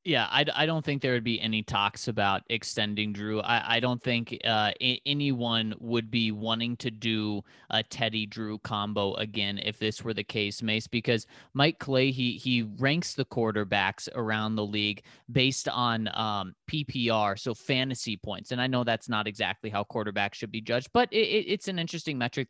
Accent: American